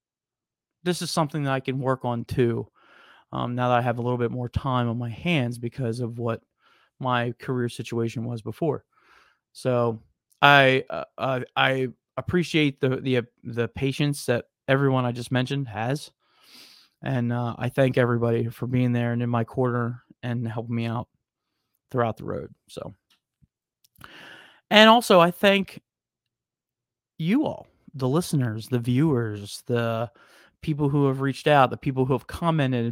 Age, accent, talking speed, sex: 30-49, American, 160 wpm, male